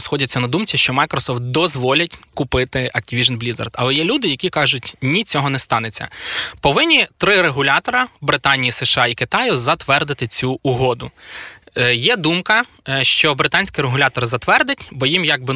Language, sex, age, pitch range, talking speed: Ukrainian, male, 20-39, 125-150 Hz, 145 wpm